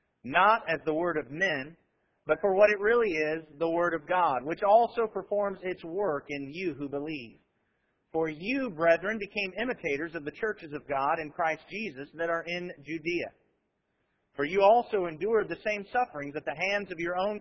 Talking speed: 190 wpm